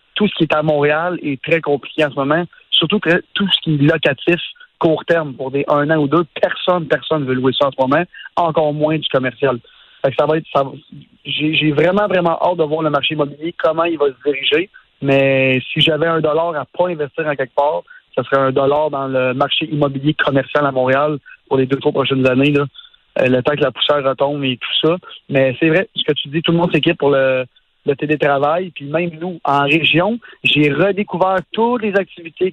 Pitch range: 140-165 Hz